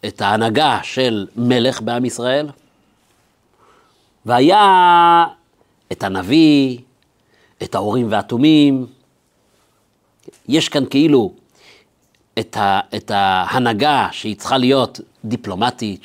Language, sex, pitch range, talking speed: Hebrew, male, 110-145 Hz, 80 wpm